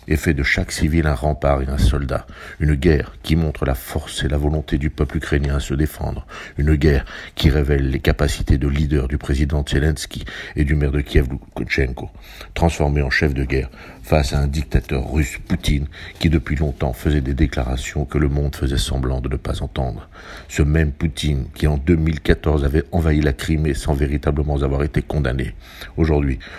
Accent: French